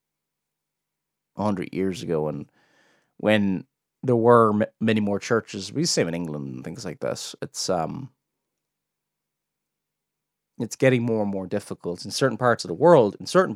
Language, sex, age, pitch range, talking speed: English, male, 30-49, 105-135 Hz, 160 wpm